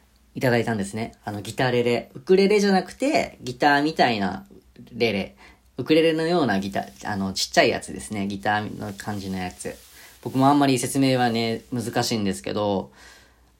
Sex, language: female, Japanese